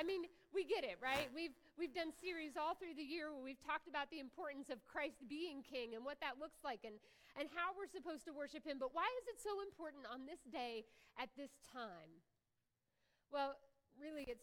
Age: 40-59